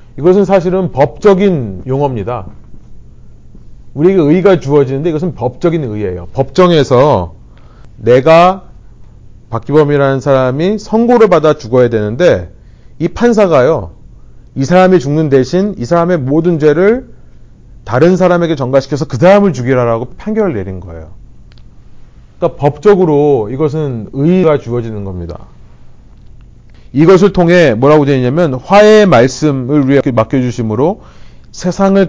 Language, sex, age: Korean, male, 40-59